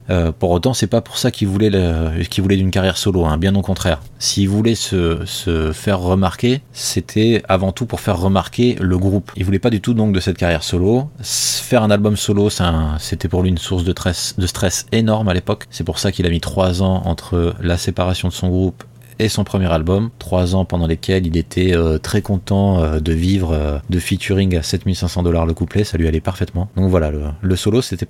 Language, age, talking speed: French, 30-49, 235 wpm